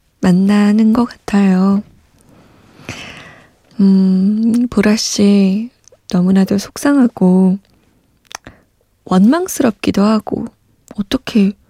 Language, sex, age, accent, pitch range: Korean, female, 20-39, native, 185-220 Hz